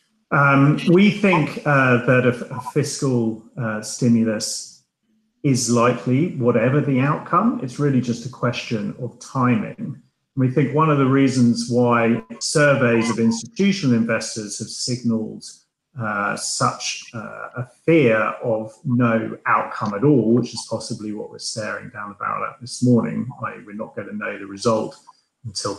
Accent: British